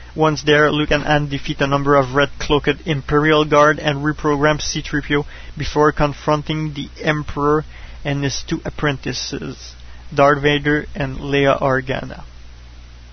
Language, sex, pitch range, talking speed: English, male, 140-155 Hz, 130 wpm